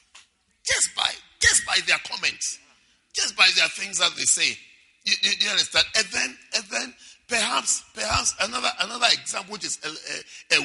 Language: English